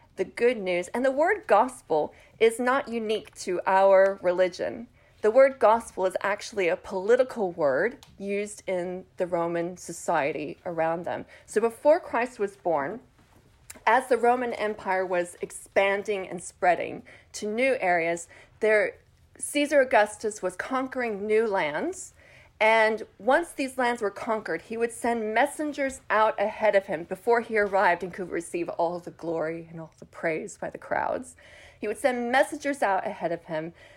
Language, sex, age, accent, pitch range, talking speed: English, female, 40-59, American, 185-255 Hz, 155 wpm